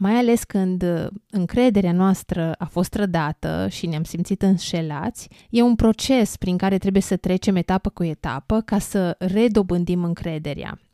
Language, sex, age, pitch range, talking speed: Romanian, female, 20-39, 175-210 Hz, 150 wpm